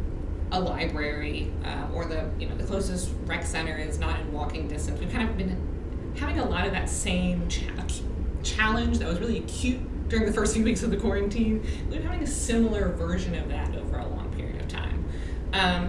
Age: 20-39